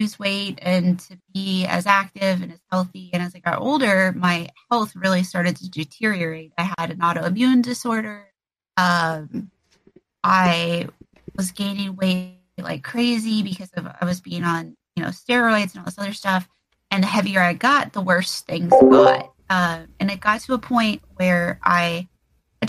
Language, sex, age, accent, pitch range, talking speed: English, female, 30-49, American, 175-200 Hz, 170 wpm